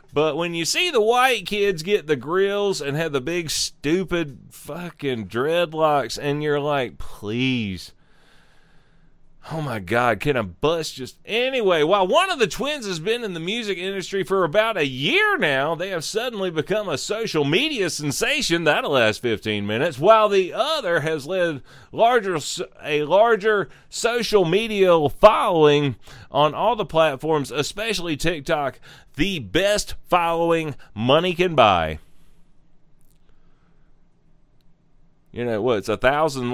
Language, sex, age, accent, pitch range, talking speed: English, male, 30-49, American, 135-185 Hz, 140 wpm